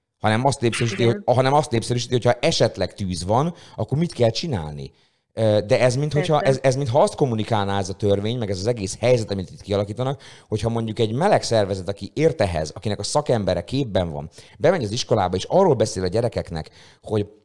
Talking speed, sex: 180 wpm, male